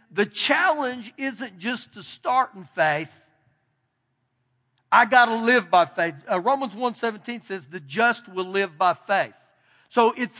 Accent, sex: American, male